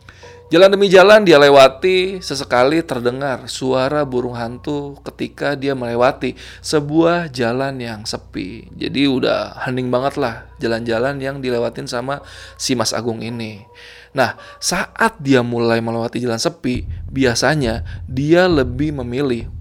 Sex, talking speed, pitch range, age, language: male, 125 wpm, 115-145 Hz, 20-39, Indonesian